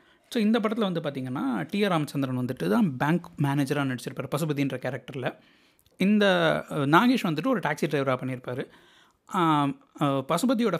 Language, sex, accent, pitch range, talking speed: Tamil, male, native, 140-180 Hz, 120 wpm